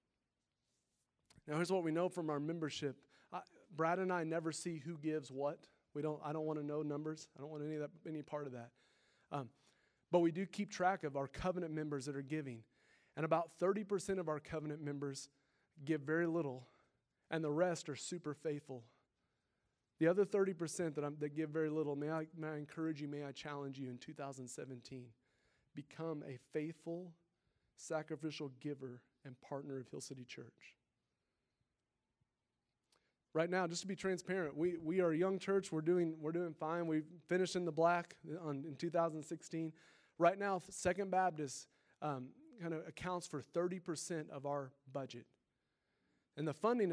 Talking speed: 175 wpm